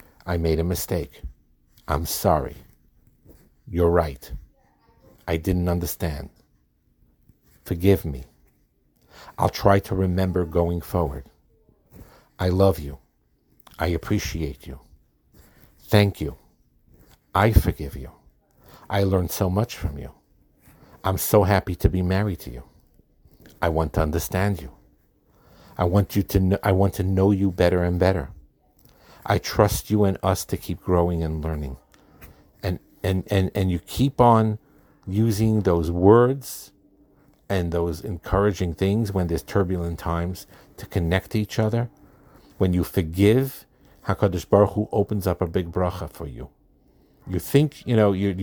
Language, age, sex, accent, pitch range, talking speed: English, 60-79, male, American, 85-100 Hz, 140 wpm